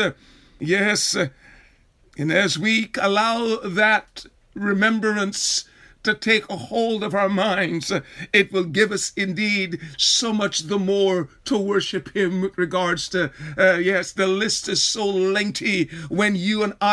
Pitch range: 180-215 Hz